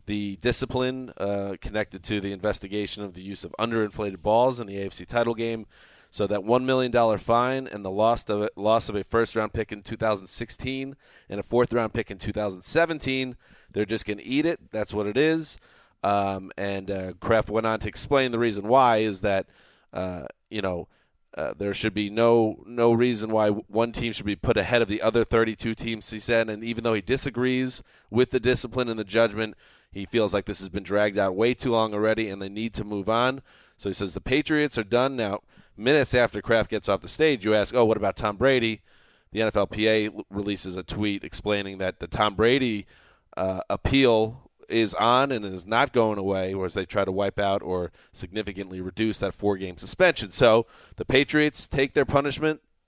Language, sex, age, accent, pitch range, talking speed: English, male, 30-49, American, 100-120 Hz, 195 wpm